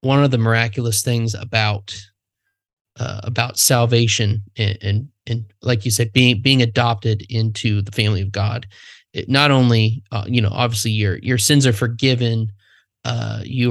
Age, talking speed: 20-39, 160 wpm